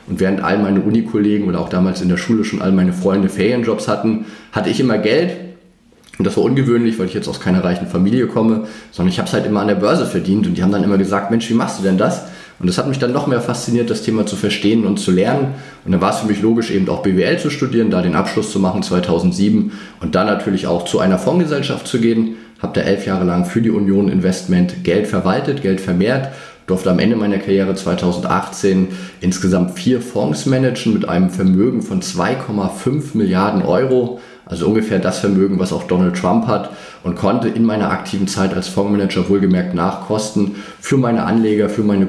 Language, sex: German, male